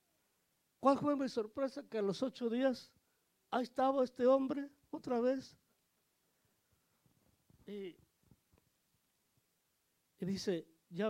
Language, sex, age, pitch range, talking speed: Spanish, male, 60-79, 175-225 Hz, 105 wpm